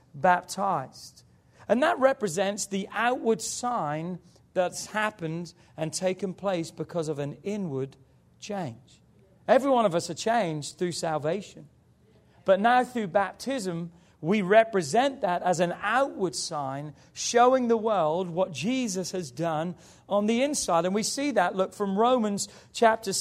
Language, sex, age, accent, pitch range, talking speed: English, male, 40-59, British, 175-235 Hz, 140 wpm